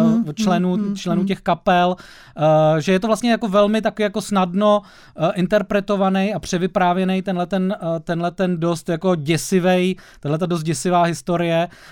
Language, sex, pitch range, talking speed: Czech, male, 160-190 Hz, 140 wpm